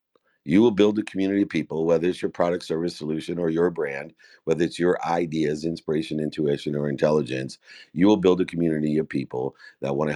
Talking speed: 200 wpm